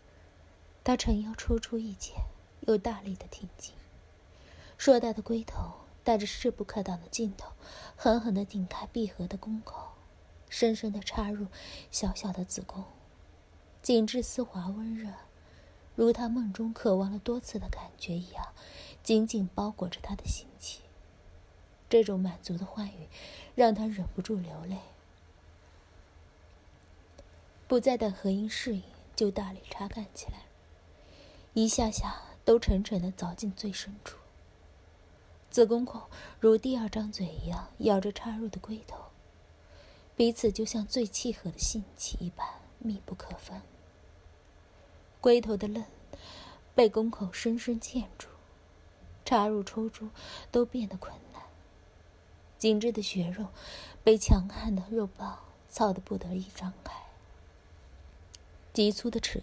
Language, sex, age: Chinese, female, 20-39